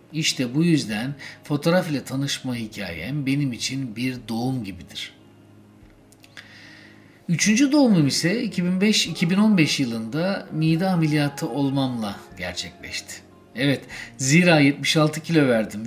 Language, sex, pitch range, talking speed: Turkish, male, 120-160 Hz, 100 wpm